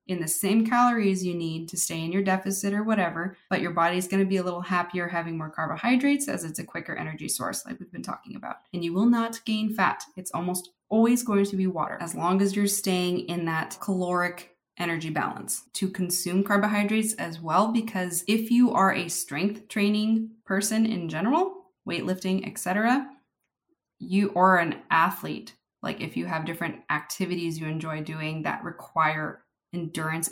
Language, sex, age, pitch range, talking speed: English, female, 20-39, 165-200 Hz, 180 wpm